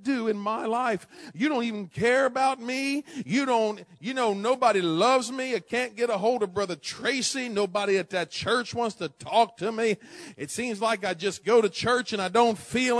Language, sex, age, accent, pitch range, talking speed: English, male, 40-59, American, 225-300 Hz, 210 wpm